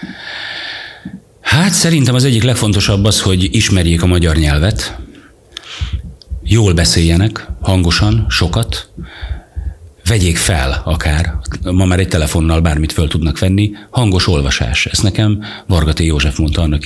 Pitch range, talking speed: 80-95 Hz, 120 wpm